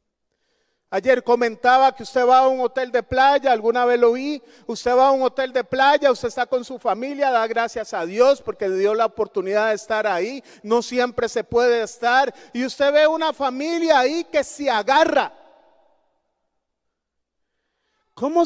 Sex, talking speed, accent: male, 170 wpm, Venezuelan